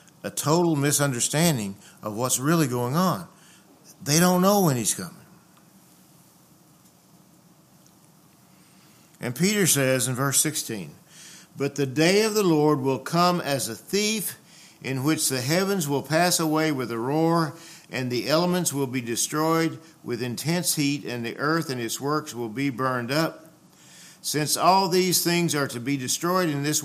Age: 50-69